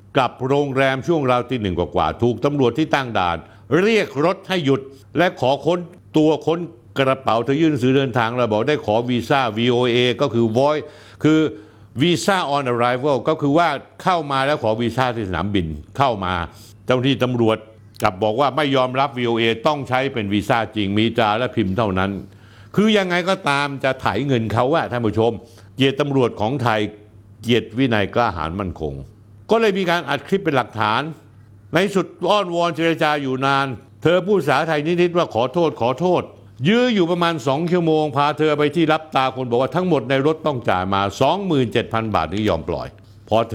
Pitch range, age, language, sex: 105-150 Hz, 60-79, Thai, male